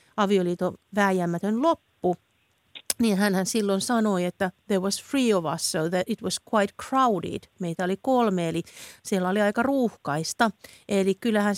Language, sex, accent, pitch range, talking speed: Finnish, female, native, 180-220 Hz, 145 wpm